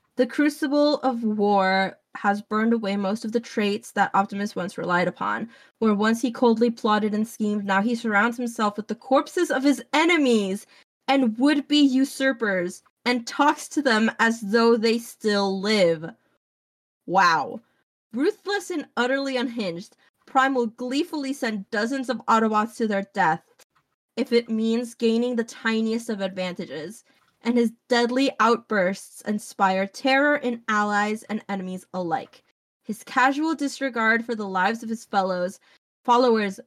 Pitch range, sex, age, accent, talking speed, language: 205-255 Hz, female, 20-39, American, 145 wpm, English